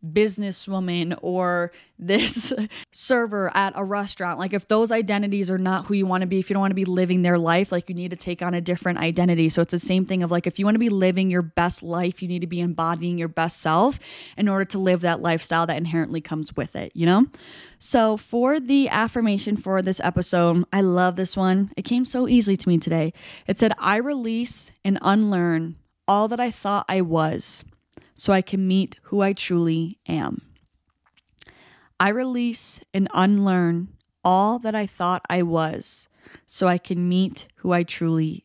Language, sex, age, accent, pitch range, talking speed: English, female, 10-29, American, 175-210 Hz, 200 wpm